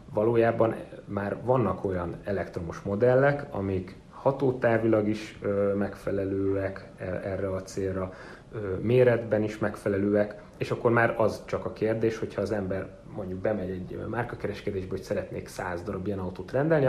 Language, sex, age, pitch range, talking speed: English, male, 30-49, 95-115 Hz, 135 wpm